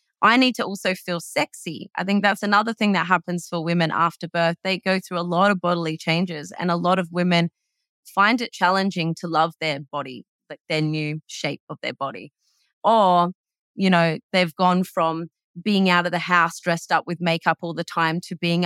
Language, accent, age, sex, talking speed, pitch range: English, Australian, 20-39, female, 205 wpm, 170-210 Hz